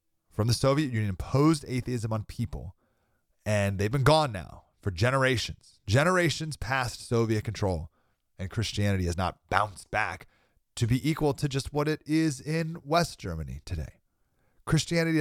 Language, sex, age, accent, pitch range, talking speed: English, male, 30-49, American, 90-130 Hz, 150 wpm